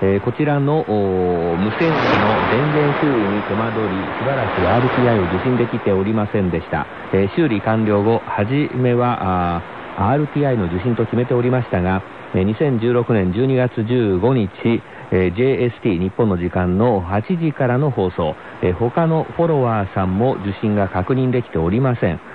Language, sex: Korean, male